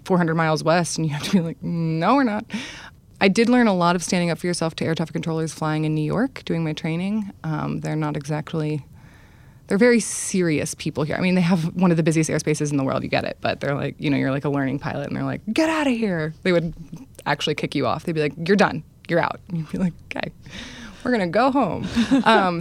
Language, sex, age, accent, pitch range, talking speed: English, female, 20-39, American, 150-180 Hz, 260 wpm